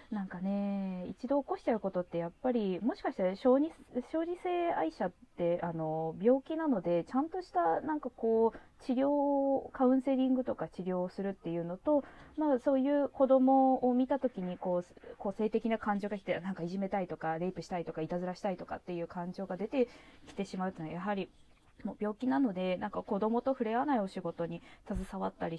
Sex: female